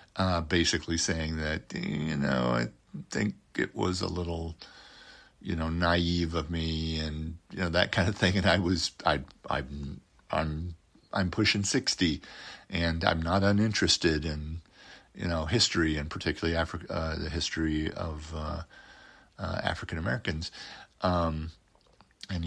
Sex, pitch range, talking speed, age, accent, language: male, 80-100 Hz, 145 wpm, 50-69, American, English